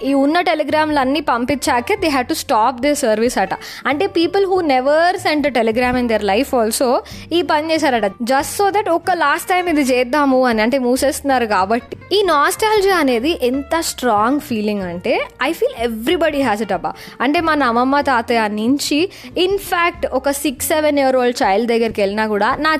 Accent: native